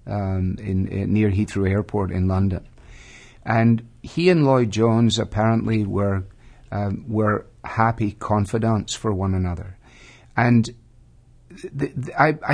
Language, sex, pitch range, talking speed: English, male, 105-120 Hz, 120 wpm